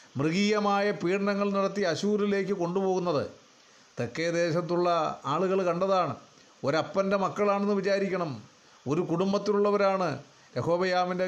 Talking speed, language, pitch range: 80 wpm, Malayalam, 165-205 Hz